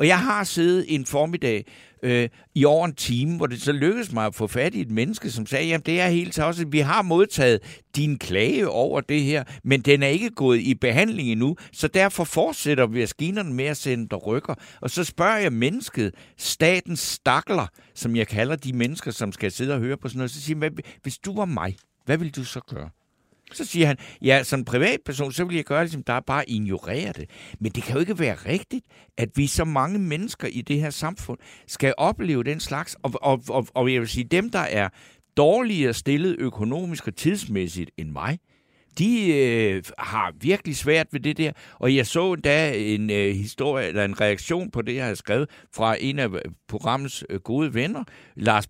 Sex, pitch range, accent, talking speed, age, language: male, 120-160 Hz, native, 215 wpm, 60-79, Danish